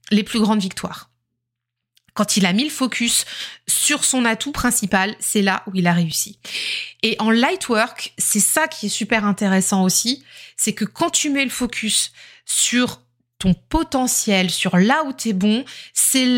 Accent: French